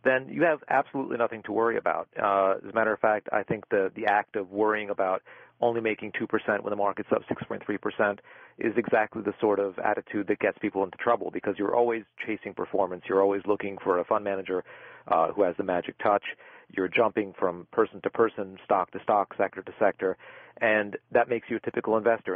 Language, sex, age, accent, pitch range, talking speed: English, male, 40-59, American, 95-115 Hz, 210 wpm